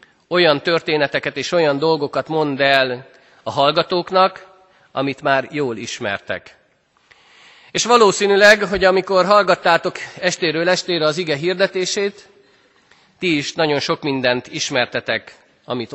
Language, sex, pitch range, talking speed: Hungarian, male, 135-180 Hz, 115 wpm